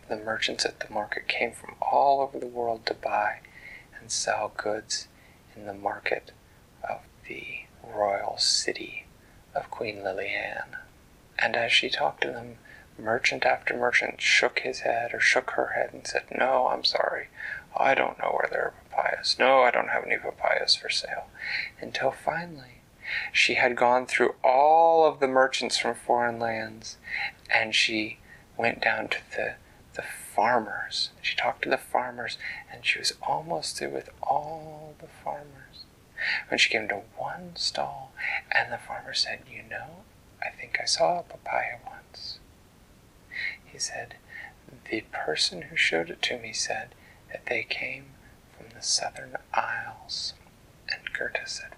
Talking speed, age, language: 160 wpm, 30-49, English